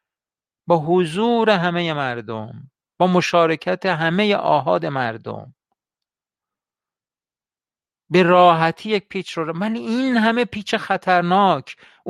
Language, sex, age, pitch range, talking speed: Persian, male, 50-69, 130-185 Hz, 100 wpm